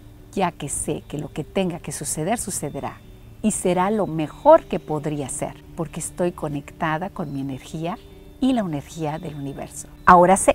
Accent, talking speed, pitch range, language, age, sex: Mexican, 170 wpm, 150-200 Hz, Spanish, 50-69, female